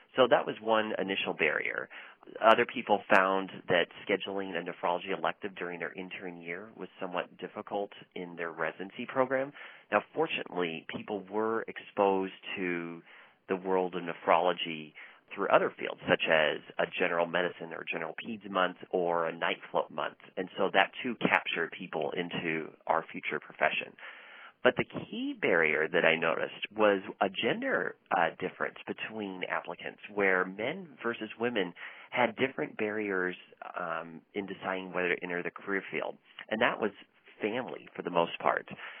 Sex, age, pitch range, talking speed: male, 30-49, 90-105 Hz, 155 wpm